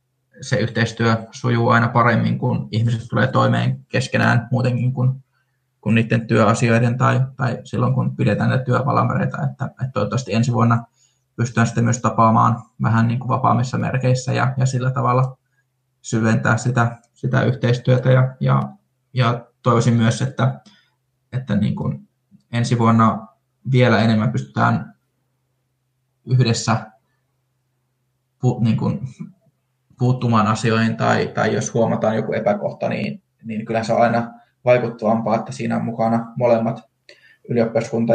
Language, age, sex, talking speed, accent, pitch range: Finnish, 20-39, male, 125 wpm, native, 115-130 Hz